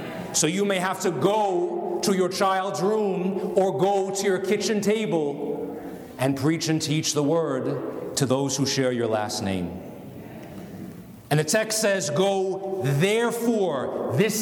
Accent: American